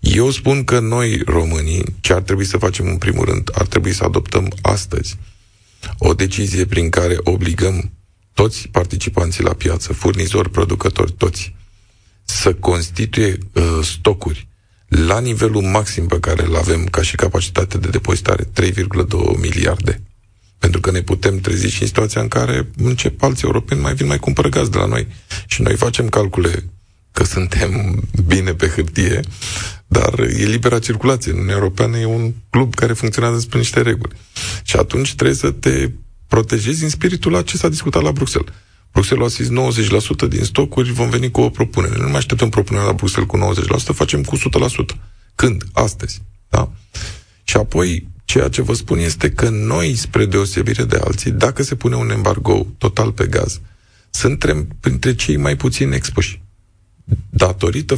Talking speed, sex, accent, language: 160 wpm, male, native, Romanian